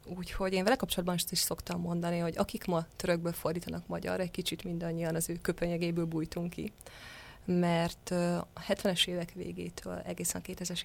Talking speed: 155 wpm